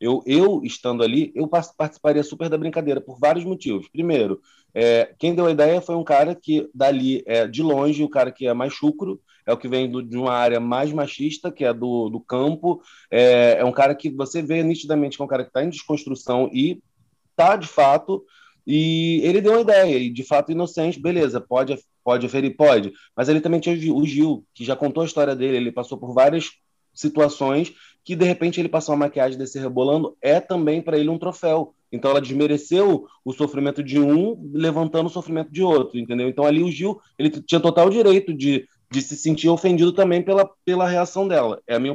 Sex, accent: male, Brazilian